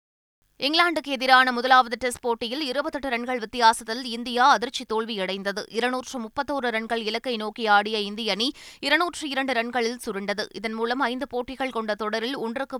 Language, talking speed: Tamil, 135 wpm